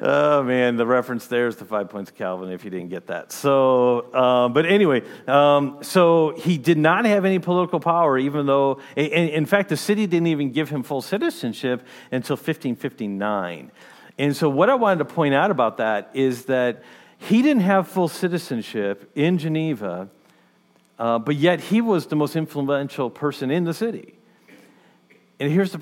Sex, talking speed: male, 180 wpm